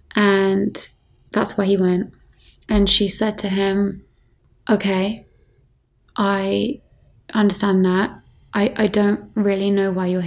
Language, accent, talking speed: English, British, 125 wpm